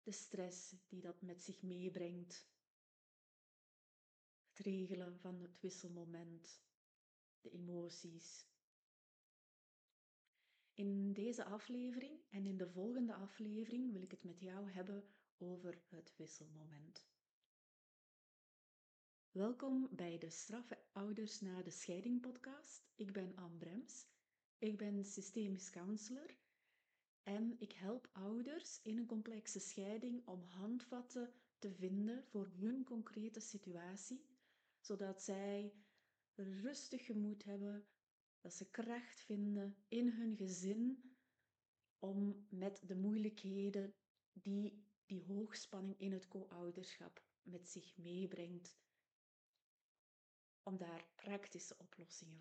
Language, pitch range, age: Dutch, 180-220 Hz, 30-49